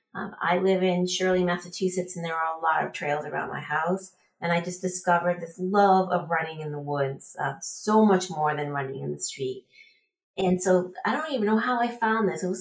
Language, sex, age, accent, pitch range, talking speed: English, female, 30-49, American, 165-195 Hz, 225 wpm